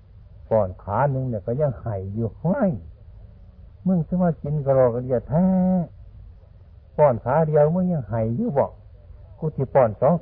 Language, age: Thai, 60-79